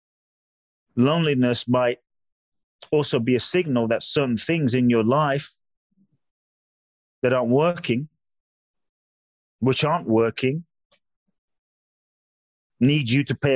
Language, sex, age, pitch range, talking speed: English, male, 30-49, 120-150 Hz, 95 wpm